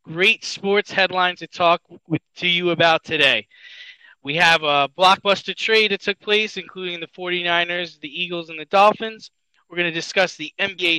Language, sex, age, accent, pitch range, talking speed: English, male, 20-39, American, 155-195 Hz, 170 wpm